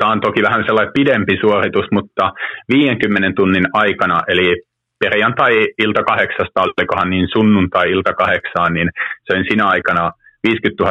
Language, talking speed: Finnish, 125 wpm